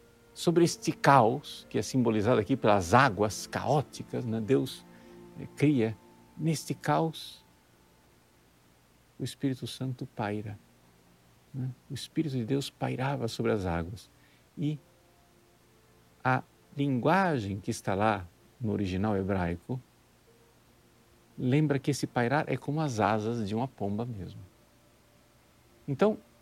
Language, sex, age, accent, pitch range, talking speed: Portuguese, male, 50-69, Brazilian, 100-145 Hz, 115 wpm